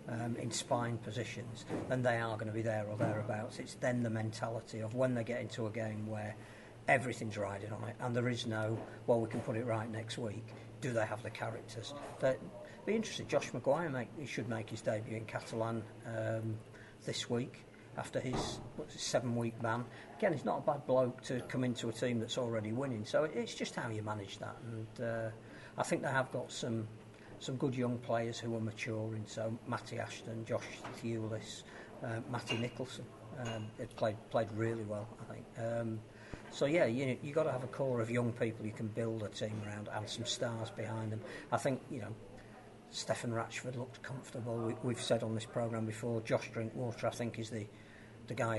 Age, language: 50-69, English